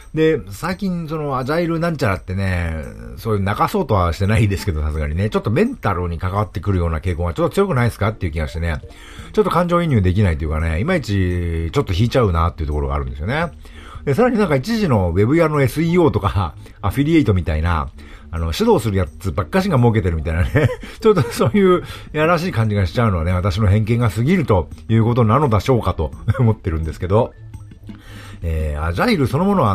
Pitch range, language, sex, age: 90-125 Hz, Japanese, male, 50-69